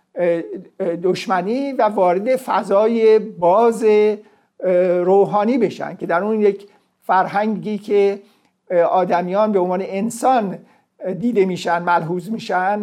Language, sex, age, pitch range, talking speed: Persian, male, 50-69, 185-235 Hz, 100 wpm